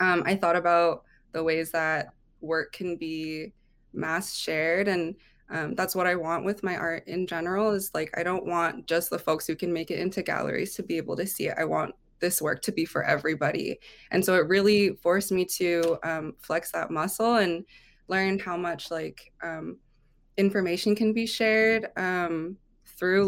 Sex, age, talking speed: female, 20-39, 190 wpm